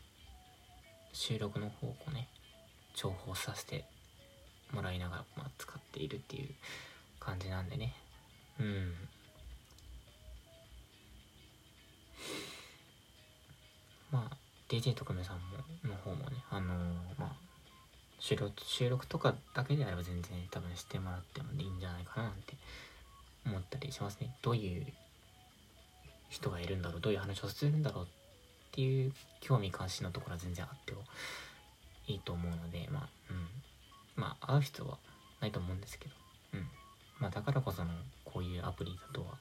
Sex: male